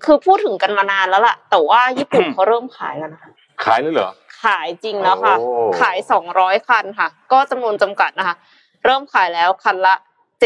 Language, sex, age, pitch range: Thai, female, 20-39, 195-260 Hz